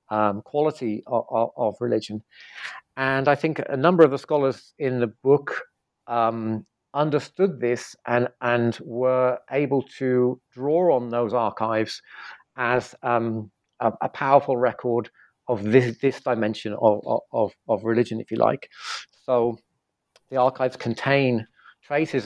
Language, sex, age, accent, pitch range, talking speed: English, male, 40-59, British, 110-130 Hz, 135 wpm